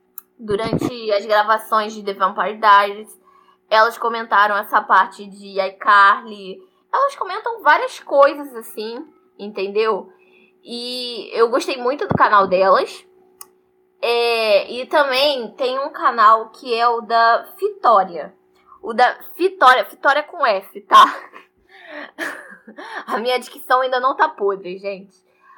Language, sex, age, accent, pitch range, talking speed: Portuguese, female, 10-29, Brazilian, 205-270 Hz, 120 wpm